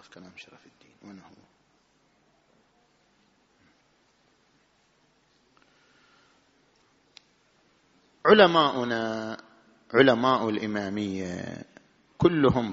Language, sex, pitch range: Arabic, male, 110-145 Hz